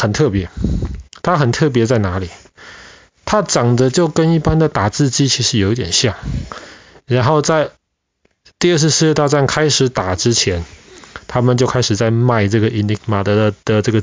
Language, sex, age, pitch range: Chinese, male, 20-39, 105-140 Hz